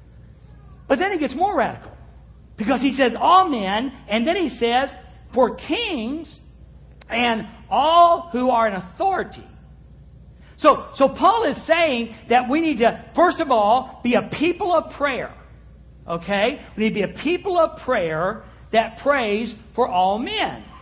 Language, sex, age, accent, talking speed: English, male, 50-69, American, 155 wpm